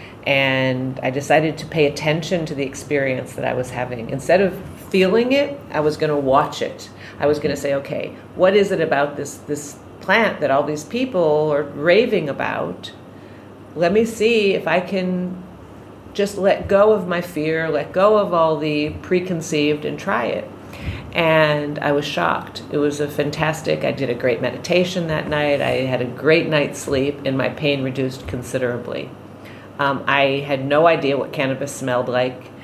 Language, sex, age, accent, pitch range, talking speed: English, female, 40-59, American, 135-175 Hz, 180 wpm